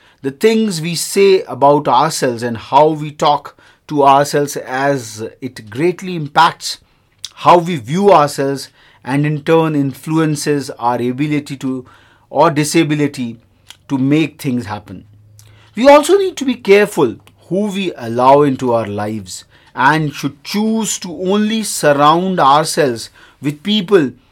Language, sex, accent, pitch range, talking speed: English, male, Indian, 130-170 Hz, 135 wpm